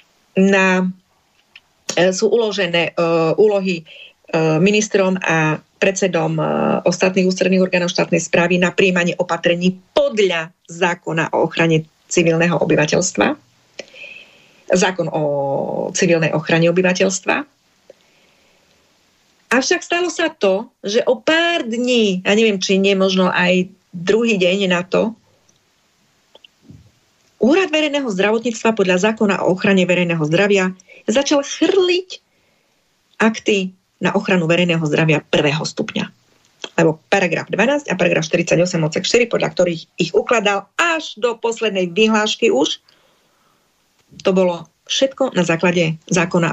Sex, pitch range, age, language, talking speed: female, 170-215 Hz, 40-59, Slovak, 115 wpm